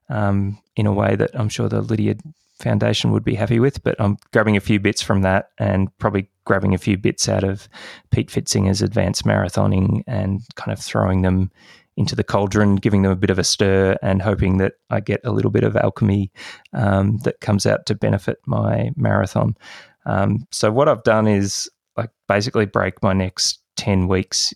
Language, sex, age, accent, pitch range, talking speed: English, male, 20-39, Australian, 95-110 Hz, 195 wpm